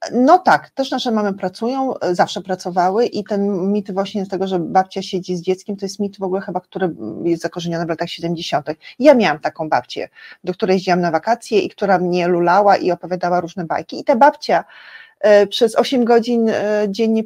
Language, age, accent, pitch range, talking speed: Polish, 30-49, native, 185-225 Hz, 190 wpm